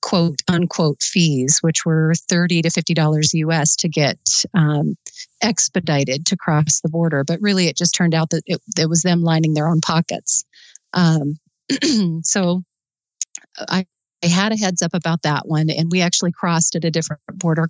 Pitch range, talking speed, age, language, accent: 160-180 Hz, 175 wpm, 40-59, English, American